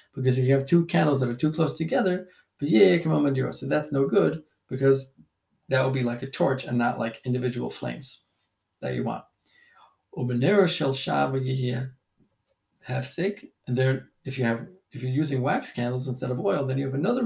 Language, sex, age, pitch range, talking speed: English, male, 40-59, 125-150 Hz, 155 wpm